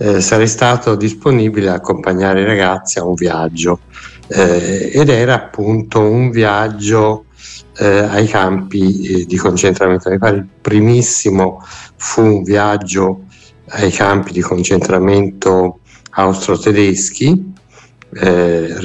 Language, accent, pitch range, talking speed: Italian, native, 95-115 Hz, 110 wpm